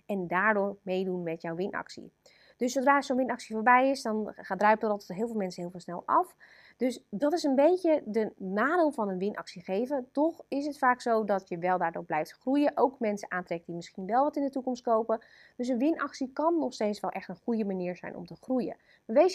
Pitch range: 200-275 Hz